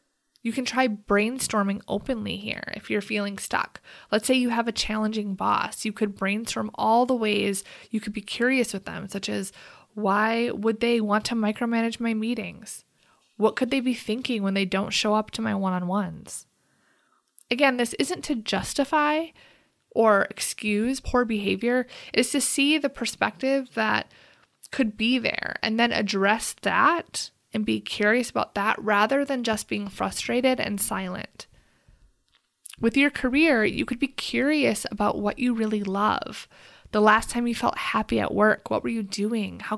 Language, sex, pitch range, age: English, female, 205-245 Hz, 20-39